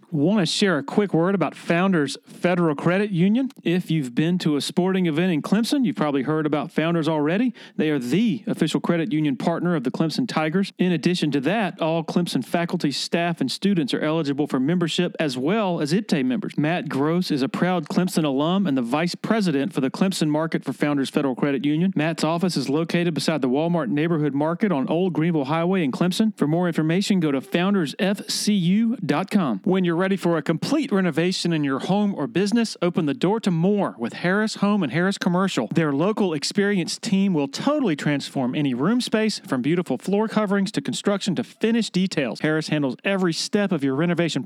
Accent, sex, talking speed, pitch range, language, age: American, male, 195 wpm, 155-195 Hz, English, 40-59